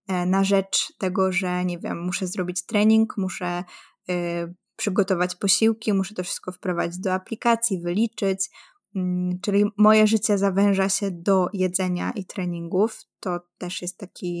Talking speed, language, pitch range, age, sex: 135 wpm, Polish, 185-210 Hz, 20-39, female